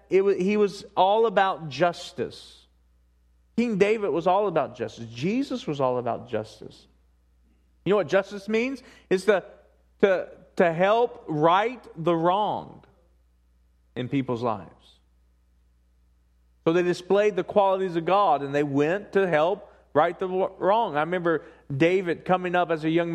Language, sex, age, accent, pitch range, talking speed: English, male, 40-59, American, 145-210 Hz, 145 wpm